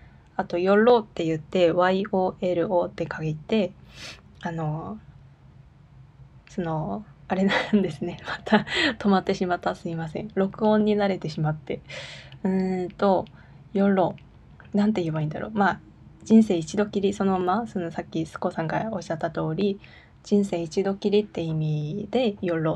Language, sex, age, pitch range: Japanese, female, 20-39, 165-205 Hz